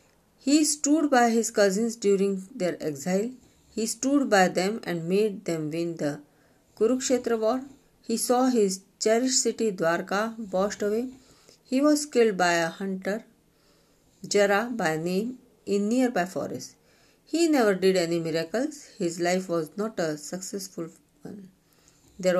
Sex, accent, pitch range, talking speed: female, native, 170-230 Hz, 140 wpm